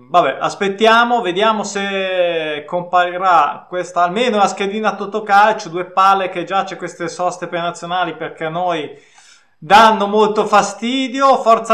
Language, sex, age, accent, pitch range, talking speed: Italian, male, 20-39, native, 175-225 Hz, 130 wpm